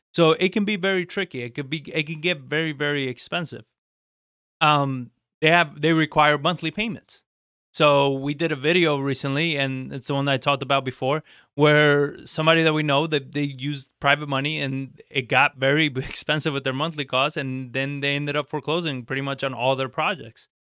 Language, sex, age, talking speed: English, male, 20-39, 200 wpm